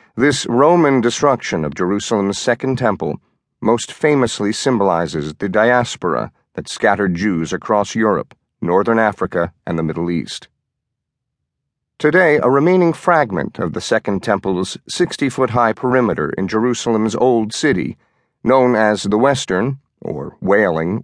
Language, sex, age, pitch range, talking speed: English, male, 50-69, 105-135 Hz, 125 wpm